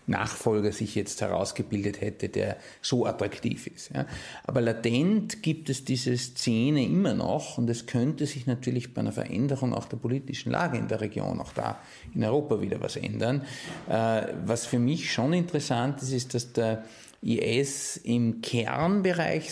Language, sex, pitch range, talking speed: German, male, 115-135 Hz, 155 wpm